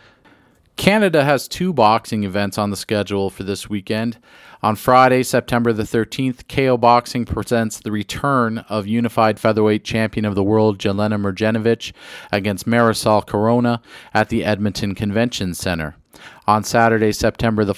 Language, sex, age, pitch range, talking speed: English, male, 40-59, 105-125 Hz, 140 wpm